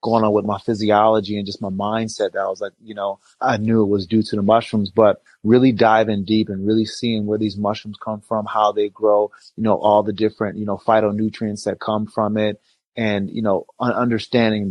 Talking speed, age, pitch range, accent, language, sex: 220 wpm, 30-49, 105-115 Hz, American, English, male